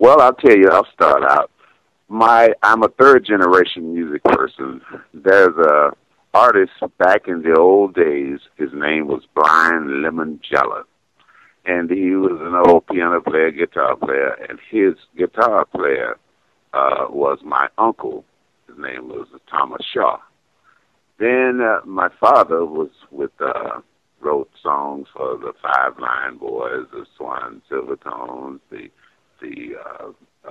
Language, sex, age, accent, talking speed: English, male, 50-69, American, 135 wpm